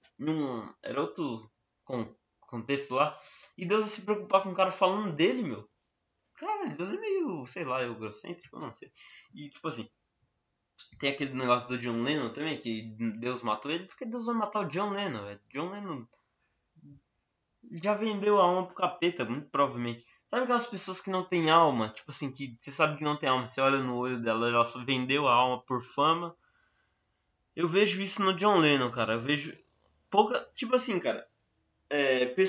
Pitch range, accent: 120-185 Hz, Brazilian